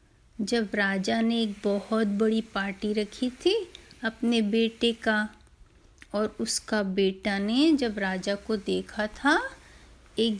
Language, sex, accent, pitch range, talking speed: Hindi, female, native, 210-265 Hz, 125 wpm